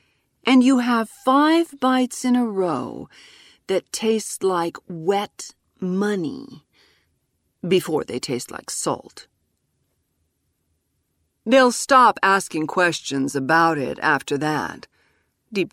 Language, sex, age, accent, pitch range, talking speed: English, female, 50-69, American, 135-180 Hz, 105 wpm